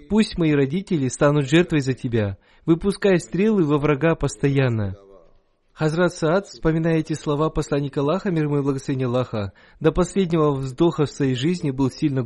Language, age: Russian, 20-39